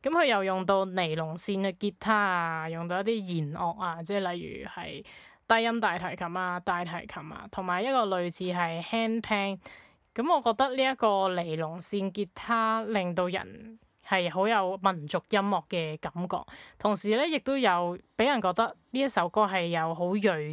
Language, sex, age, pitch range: Chinese, female, 20-39, 175-220 Hz